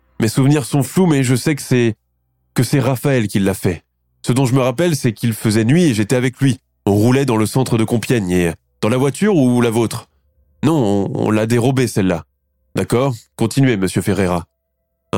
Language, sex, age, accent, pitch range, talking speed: French, male, 20-39, French, 105-140 Hz, 210 wpm